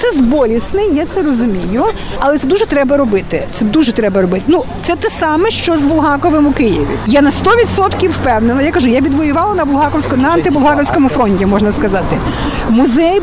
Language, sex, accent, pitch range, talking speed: Ukrainian, female, native, 245-375 Hz, 180 wpm